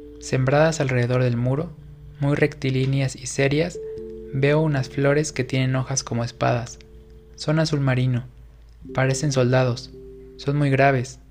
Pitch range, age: 120-140 Hz, 20-39